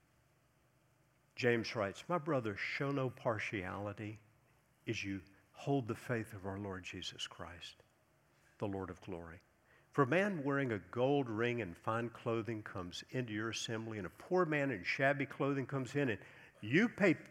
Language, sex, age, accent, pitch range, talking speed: English, male, 50-69, American, 110-150 Hz, 165 wpm